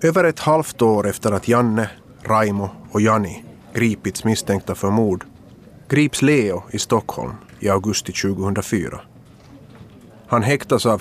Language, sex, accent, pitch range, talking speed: Swedish, male, Finnish, 100-115 Hz, 130 wpm